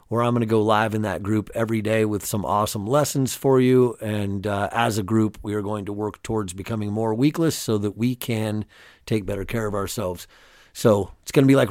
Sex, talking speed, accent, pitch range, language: male, 235 wpm, American, 105-125 Hz, English